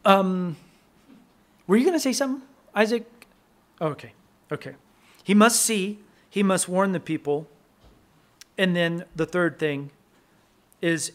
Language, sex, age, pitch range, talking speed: English, male, 40-59, 165-200 Hz, 135 wpm